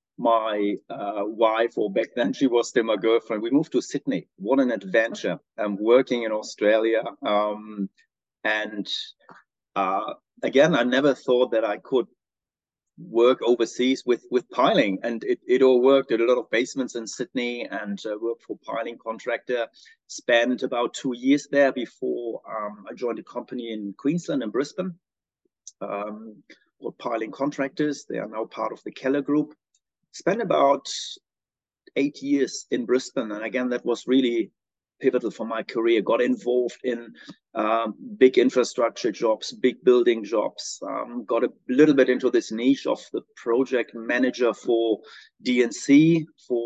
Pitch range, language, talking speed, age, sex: 110-145 Hz, English, 160 wpm, 30-49, male